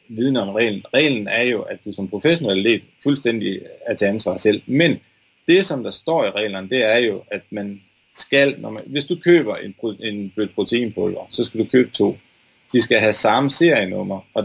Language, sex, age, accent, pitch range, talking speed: Danish, male, 30-49, native, 105-150 Hz, 195 wpm